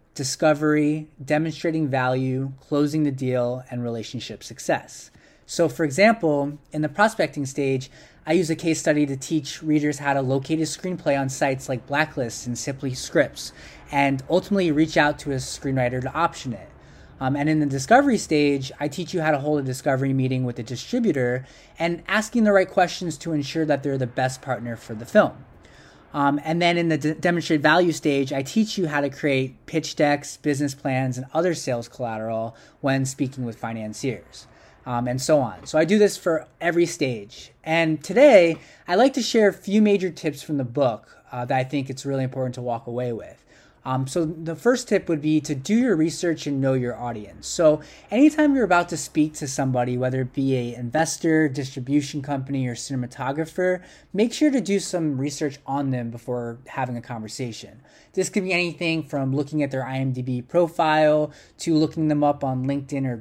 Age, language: 20-39, English